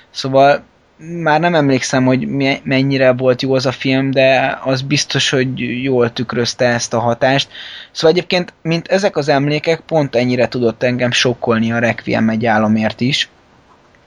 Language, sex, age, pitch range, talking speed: Hungarian, male, 20-39, 115-140 Hz, 155 wpm